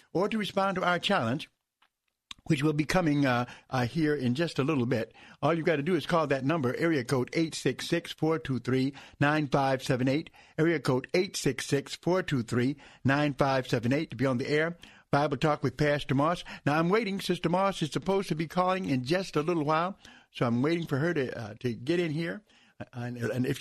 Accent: American